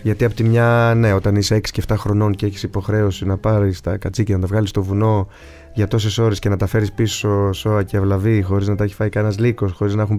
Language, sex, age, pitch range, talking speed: Greek, male, 20-39, 95-120 Hz, 255 wpm